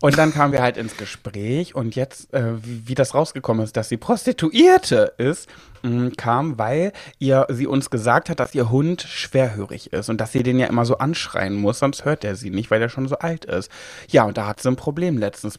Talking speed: 225 wpm